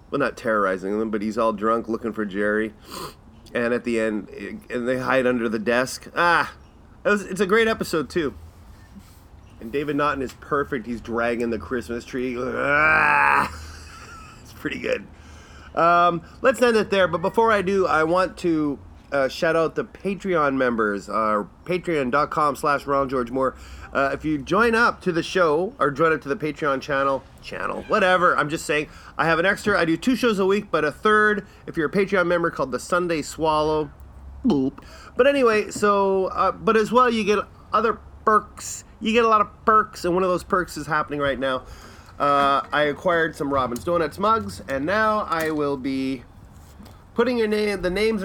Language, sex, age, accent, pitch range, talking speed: English, male, 30-49, American, 115-185 Hz, 190 wpm